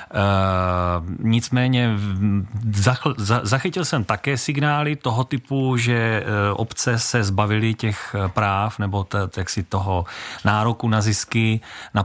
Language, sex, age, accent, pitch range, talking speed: Czech, male, 30-49, native, 100-120 Hz, 135 wpm